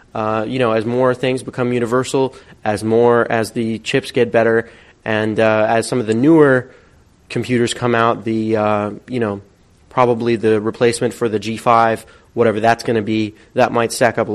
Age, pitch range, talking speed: 30-49, 115-135 Hz, 190 wpm